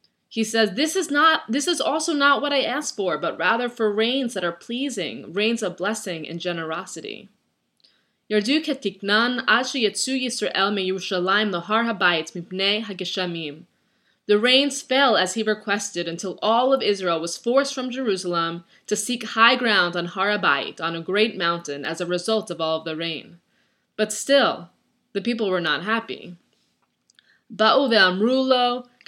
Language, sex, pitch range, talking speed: English, female, 195-255 Hz, 135 wpm